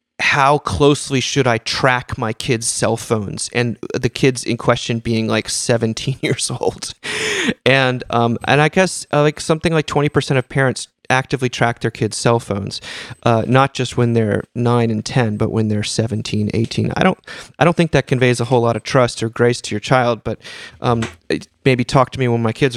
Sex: male